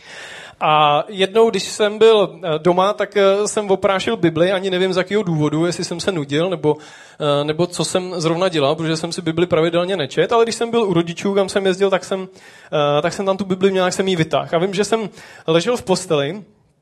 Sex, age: male, 20-39